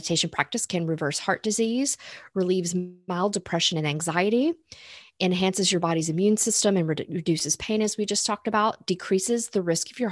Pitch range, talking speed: 170-215 Hz, 170 wpm